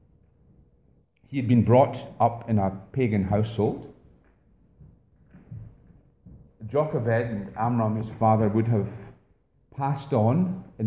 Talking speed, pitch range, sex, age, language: 105 wpm, 105-125 Hz, male, 40-59, English